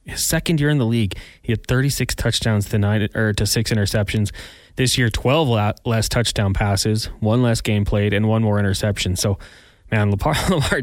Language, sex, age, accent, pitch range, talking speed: English, male, 20-39, American, 105-130 Hz, 175 wpm